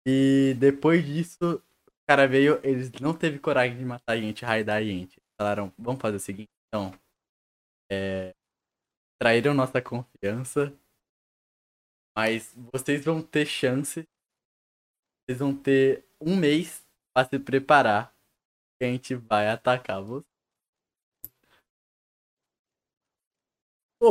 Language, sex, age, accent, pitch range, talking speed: Portuguese, male, 10-29, Brazilian, 125-150 Hz, 115 wpm